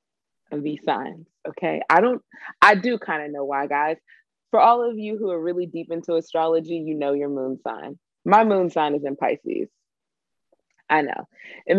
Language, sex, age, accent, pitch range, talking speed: English, female, 20-39, American, 145-195 Hz, 185 wpm